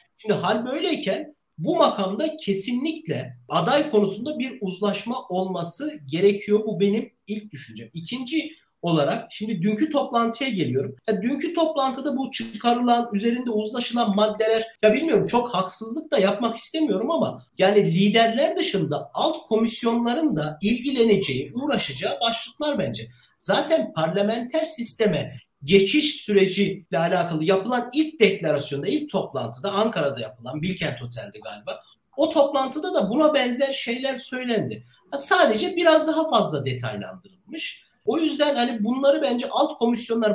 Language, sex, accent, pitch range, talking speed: Turkish, male, native, 190-270 Hz, 125 wpm